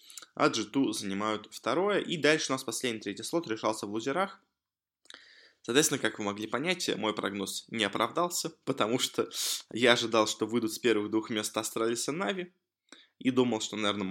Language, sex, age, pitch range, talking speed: Russian, male, 20-39, 105-150 Hz, 160 wpm